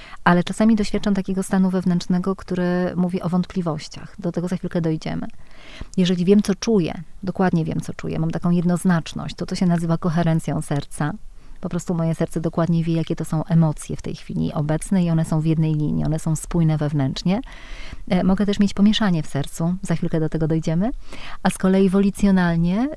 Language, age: Polish, 30-49